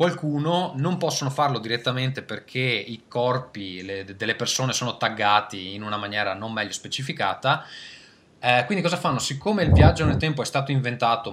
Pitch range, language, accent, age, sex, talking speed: 105-150 Hz, Italian, native, 20-39, male, 160 wpm